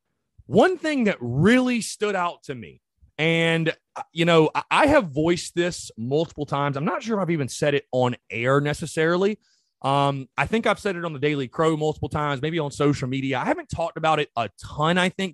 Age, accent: 30-49, American